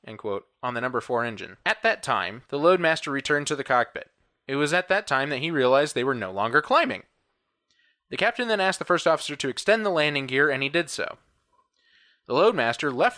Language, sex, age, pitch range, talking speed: English, male, 20-39, 130-170 Hz, 220 wpm